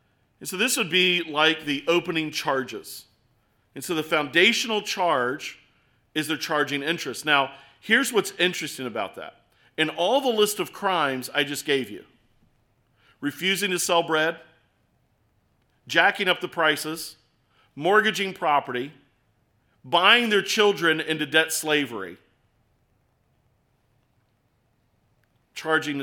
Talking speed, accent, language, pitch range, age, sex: 120 wpm, American, English, 125-170 Hz, 40-59, male